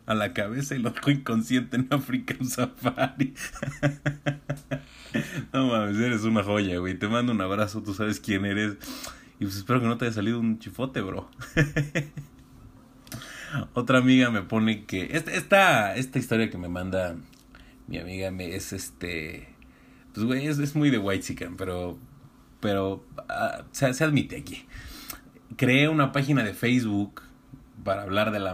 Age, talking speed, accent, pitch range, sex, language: 30-49, 155 wpm, Mexican, 100-135 Hz, male, Spanish